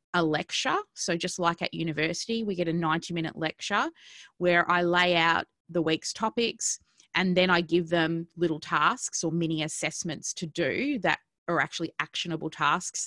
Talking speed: 170 wpm